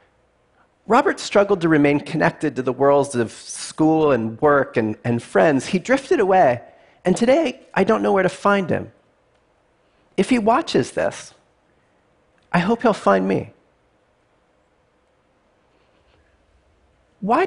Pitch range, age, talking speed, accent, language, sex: 130-195 Hz, 40-59, 125 wpm, American, Russian, male